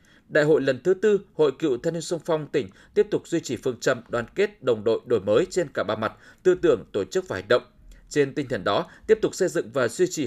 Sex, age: male, 20-39